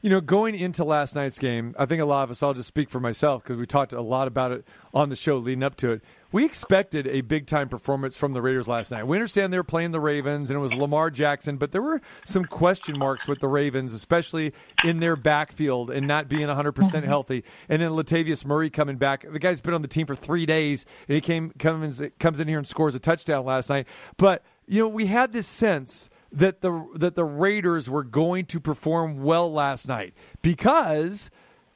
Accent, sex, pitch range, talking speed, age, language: American, male, 145-185 Hz, 225 wpm, 40-59, English